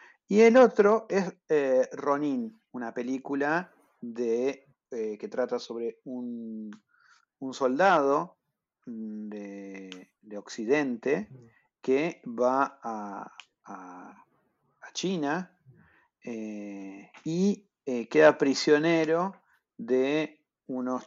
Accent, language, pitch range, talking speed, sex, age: Argentinian, Spanish, 120-160 Hz, 90 wpm, male, 40-59